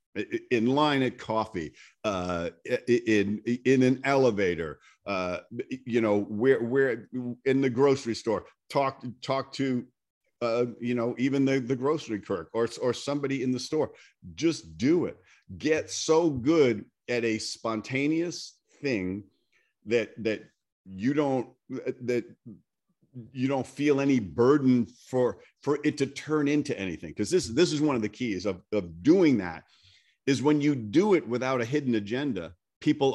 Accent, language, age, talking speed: American, English, 50-69, 150 wpm